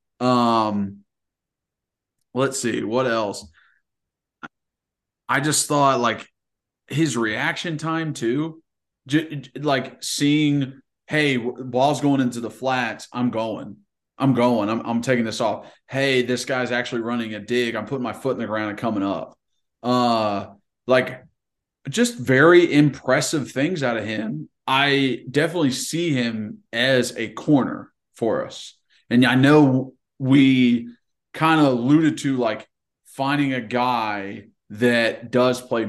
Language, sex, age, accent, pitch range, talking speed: English, male, 20-39, American, 115-145 Hz, 135 wpm